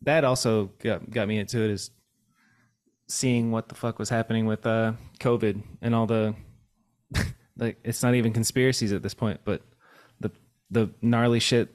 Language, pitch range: English, 105-125 Hz